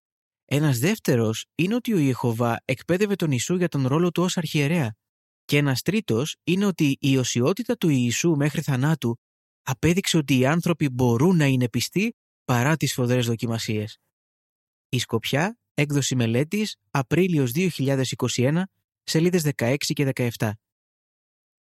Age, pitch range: 20-39, 125-170 Hz